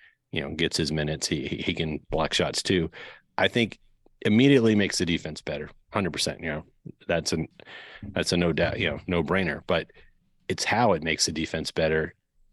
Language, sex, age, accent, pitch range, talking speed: English, male, 30-49, American, 80-100 Hz, 185 wpm